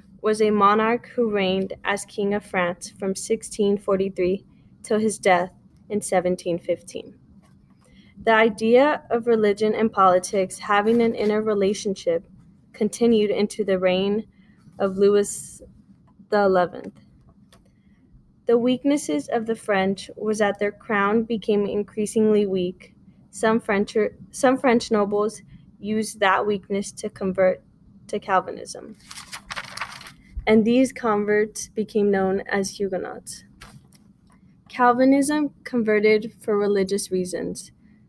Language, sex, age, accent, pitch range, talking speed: English, female, 10-29, American, 190-220 Hz, 105 wpm